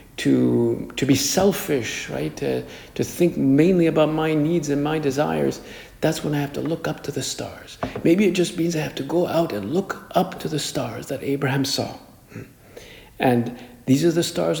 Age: 60-79